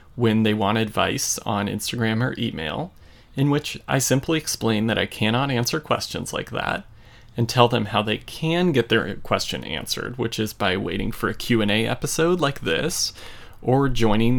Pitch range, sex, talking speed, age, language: 110-135 Hz, male, 175 wpm, 30-49, English